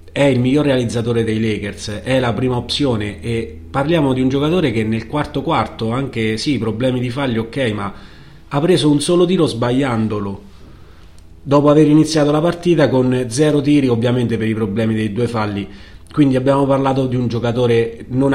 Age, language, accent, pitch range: 30-49, Italian, native, 110-135 Hz